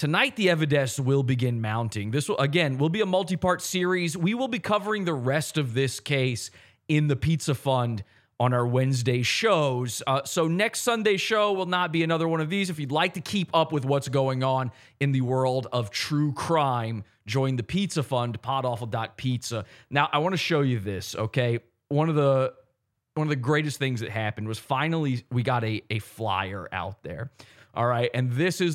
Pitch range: 120-160 Hz